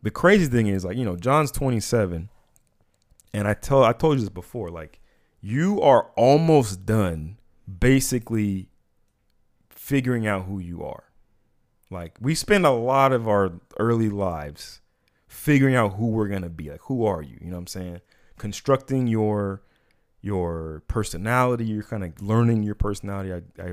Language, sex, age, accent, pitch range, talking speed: English, male, 30-49, American, 90-115 Hz, 160 wpm